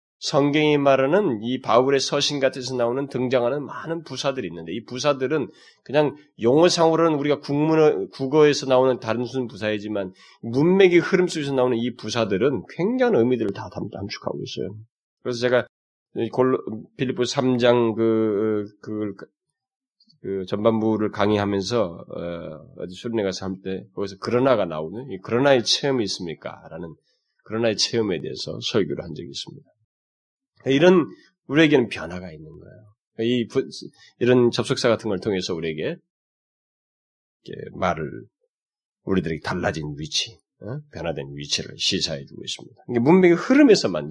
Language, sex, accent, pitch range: Korean, male, native, 100-140 Hz